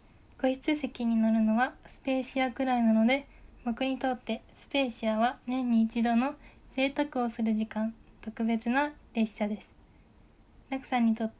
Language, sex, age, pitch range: Japanese, female, 20-39, 225-265 Hz